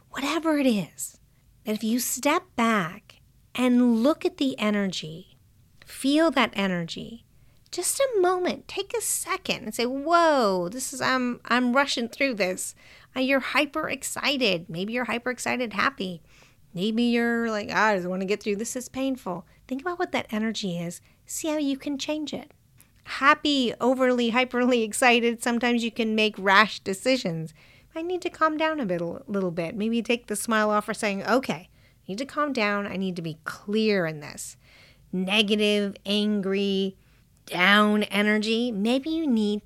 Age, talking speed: 40-59, 170 wpm